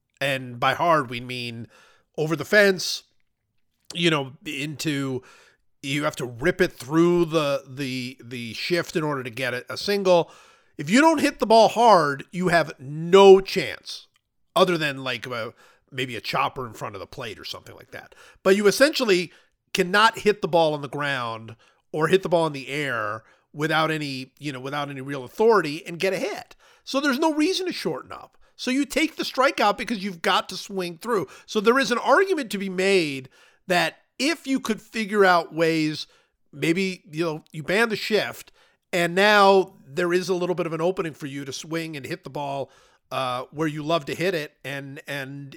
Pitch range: 140-195 Hz